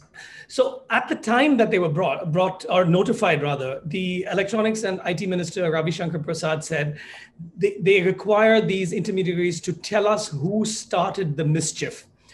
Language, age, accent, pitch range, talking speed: English, 30-49, Indian, 175-220 Hz, 160 wpm